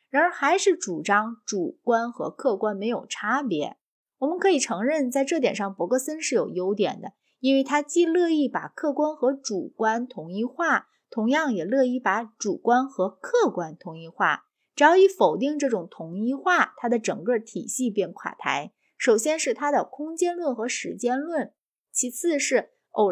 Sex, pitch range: female, 210-295 Hz